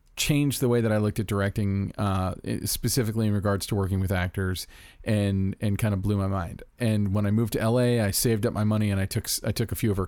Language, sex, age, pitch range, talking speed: English, male, 40-59, 100-115 Hz, 255 wpm